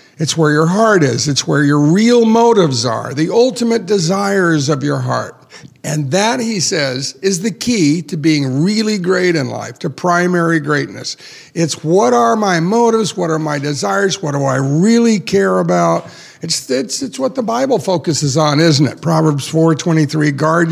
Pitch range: 150-205 Hz